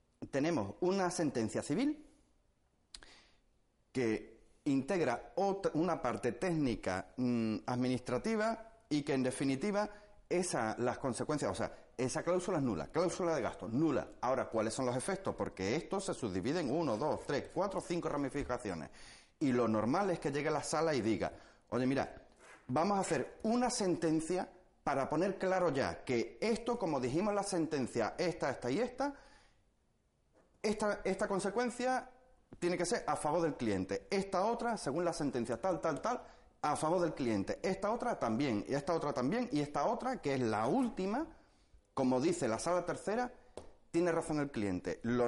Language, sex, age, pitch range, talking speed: Spanish, male, 30-49, 125-195 Hz, 165 wpm